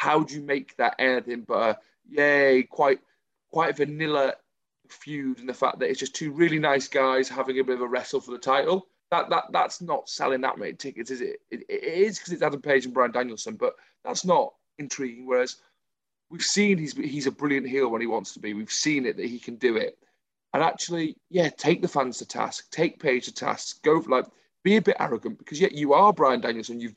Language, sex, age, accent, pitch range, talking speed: English, male, 30-49, British, 125-165 Hz, 235 wpm